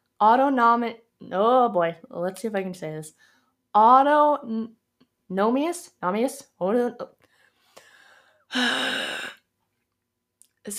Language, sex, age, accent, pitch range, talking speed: English, female, 20-39, American, 180-250 Hz, 85 wpm